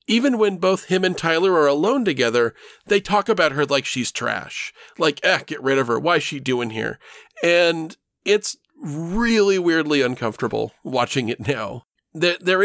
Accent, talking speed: American, 170 wpm